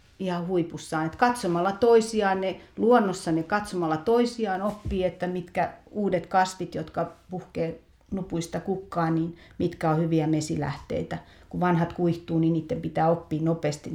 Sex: female